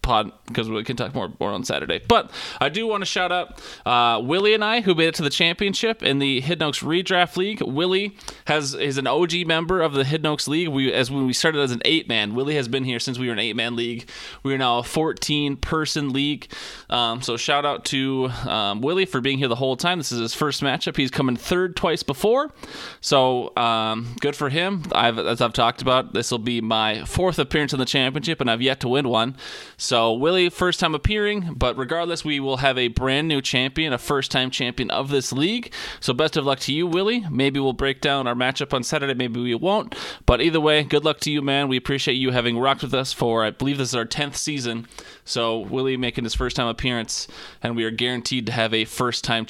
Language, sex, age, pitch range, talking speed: English, male, 20-39, 120-155 Hz, 240 wpm